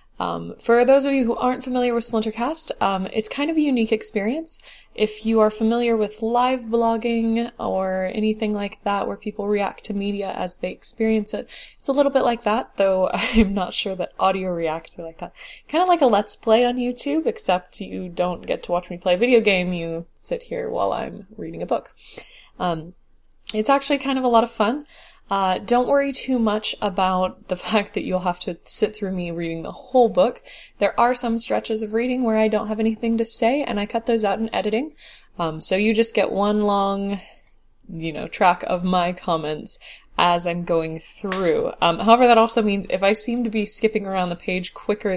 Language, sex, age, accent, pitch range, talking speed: English, female, 10-29, American, 185-235 Hz, 215 wpm